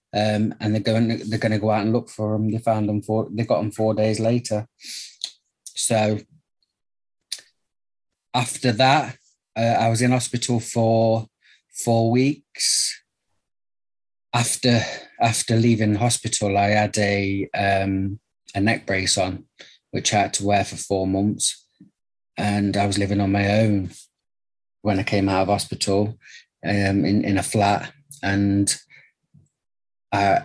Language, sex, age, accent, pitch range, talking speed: English, male, 30-49, British, 100-115 Hz, 145 wpm